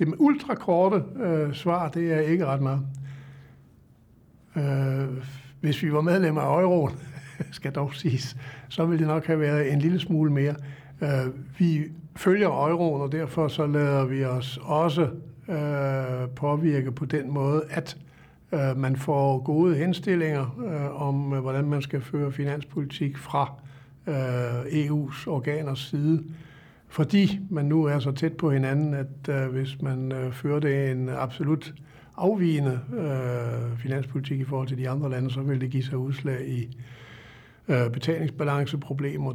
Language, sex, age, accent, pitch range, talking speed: Danish, male, 60-79, native, 135-155 Hz, 150 wpm